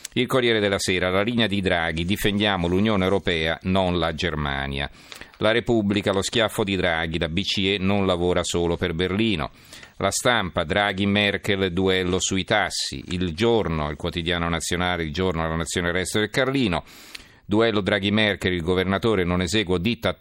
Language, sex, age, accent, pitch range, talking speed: Italian, male, 50-69, native, 85-105 Hz, 155 wpm